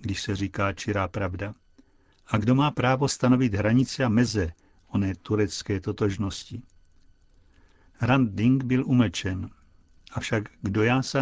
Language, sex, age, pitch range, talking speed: Czech, male, 60-79, 95-125 Hz, 120 wpm